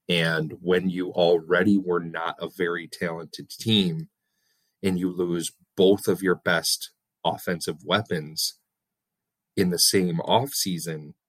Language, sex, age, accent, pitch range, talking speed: English, male, 30-49, American, 85-110 Hz, 120 wpm